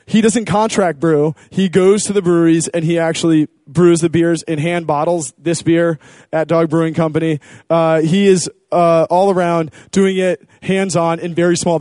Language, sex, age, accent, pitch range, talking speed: English, male, 20-39, American, 165-190 Hz, 185 wpm